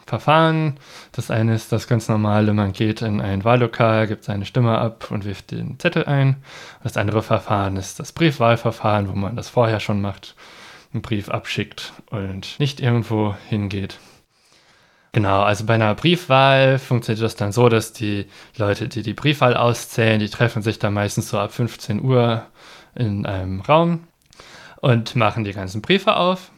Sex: male